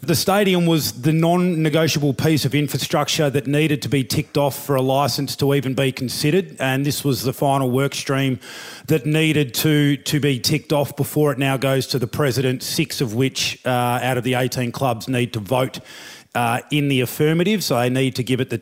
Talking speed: 210 wpm